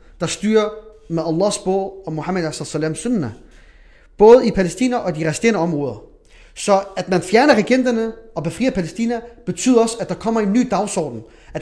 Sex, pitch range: male, 150-200 Hz